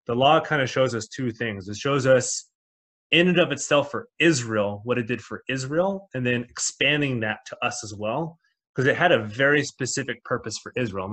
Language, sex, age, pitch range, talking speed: English, male, 20-39, 115-145 Hz, 215 wpm